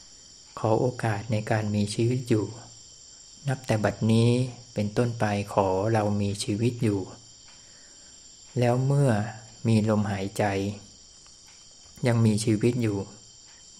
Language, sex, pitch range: Thai, male, 105-115 Hz